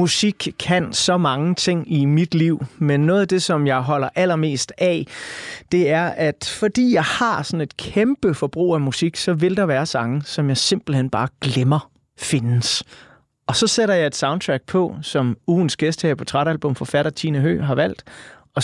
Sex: male